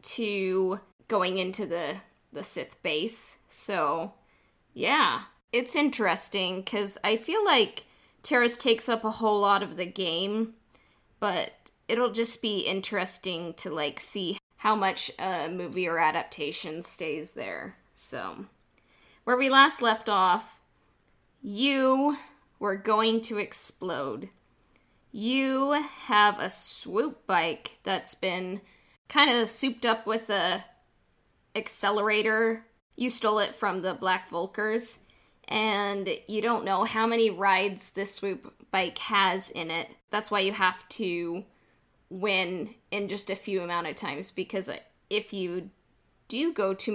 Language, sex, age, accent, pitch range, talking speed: English, female, 20-39, American, 185-225 Hz, 135 wpm